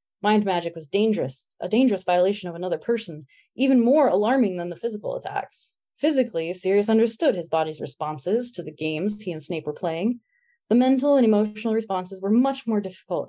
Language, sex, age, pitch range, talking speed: English, female, 30-49, 170-225 Hz, 180 wpm